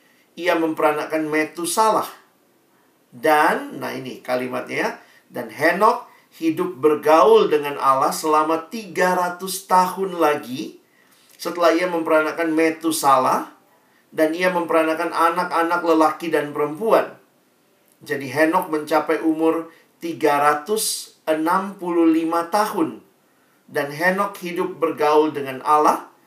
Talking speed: 90 wpm